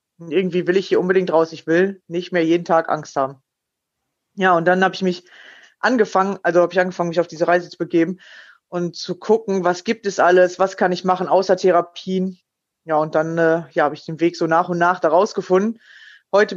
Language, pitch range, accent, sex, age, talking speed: German, 170-190 Hz, German, female, 20-39, 215 wpm